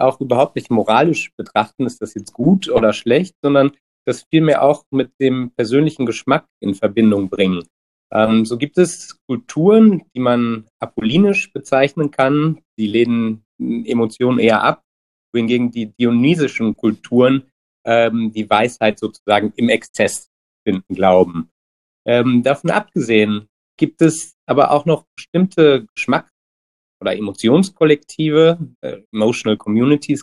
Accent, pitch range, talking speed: German, 110-145 Hz, 125 wpm